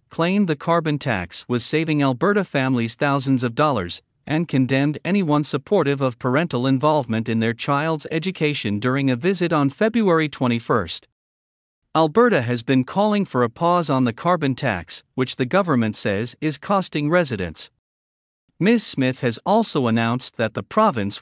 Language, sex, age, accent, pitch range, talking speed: English, male, 50-69, American, 120-160 Hz, 155 wpm